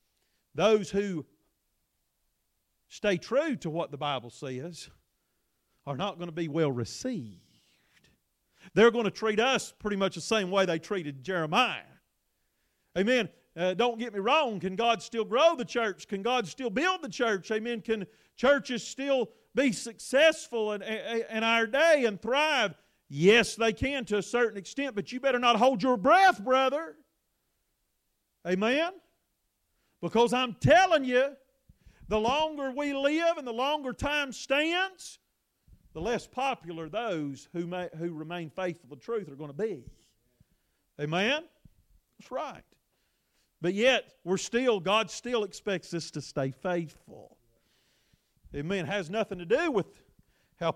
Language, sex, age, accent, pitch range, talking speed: English, male, 40-59, American, 175-250 Hz, 150 wpm